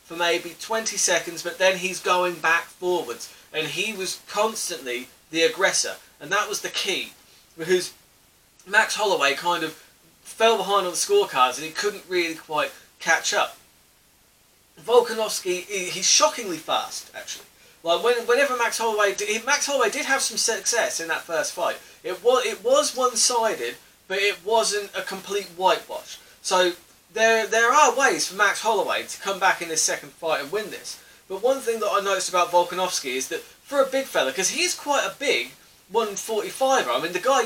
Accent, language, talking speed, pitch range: British, English, 175 wpm, 175-240 Hz